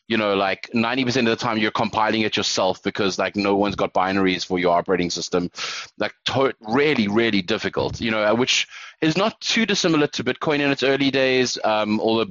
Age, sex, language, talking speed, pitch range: 20-39, male, English, 200 wpm, 105-160 Hz